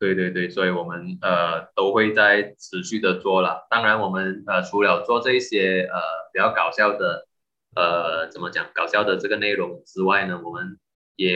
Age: 20-39